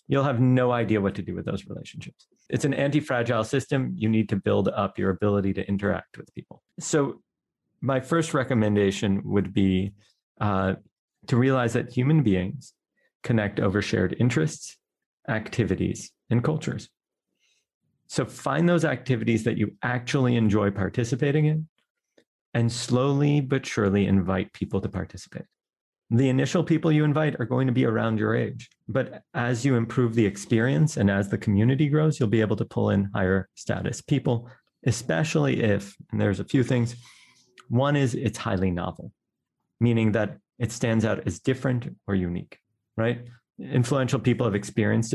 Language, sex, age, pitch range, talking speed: English, male, 40-59, 105-135 Hz, 160 wpm